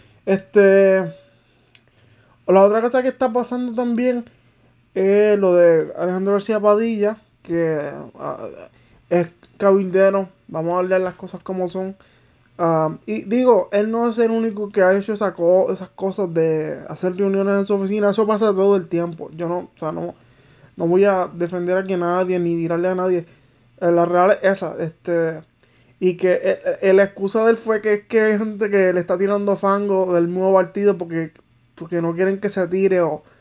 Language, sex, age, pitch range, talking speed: English, male, 20-39, 175-210 Hz, 175 wpm